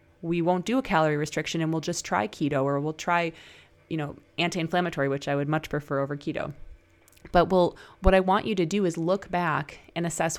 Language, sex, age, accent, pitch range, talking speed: English, female, 20-39, American, 150-190 Hz, 215 wpm